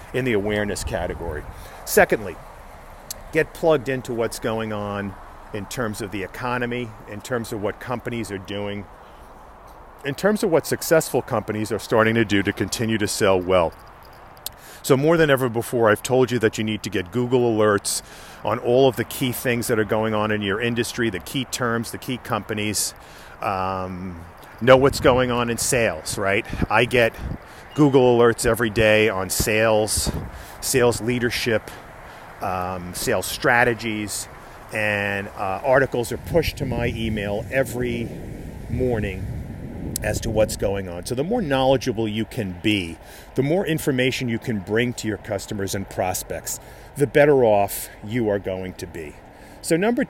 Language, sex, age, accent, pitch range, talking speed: English, male, 50-69, American, 100-125 Hz, 165 wpm